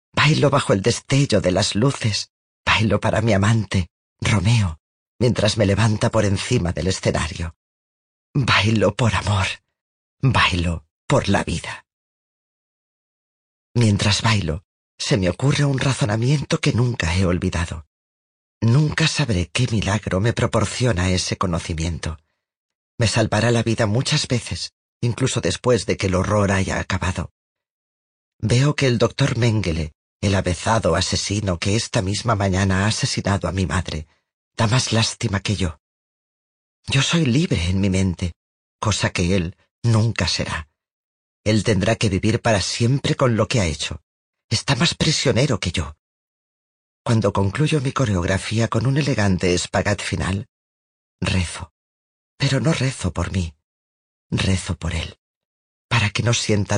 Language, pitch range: Spanish, 90-115 Hz